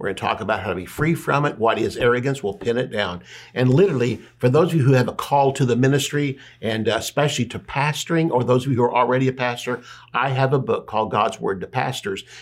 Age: 60-79